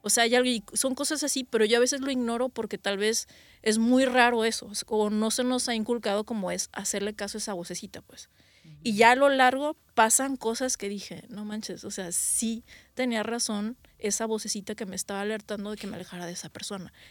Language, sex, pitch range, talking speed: English, female, 205-240 Hz, 215 wpm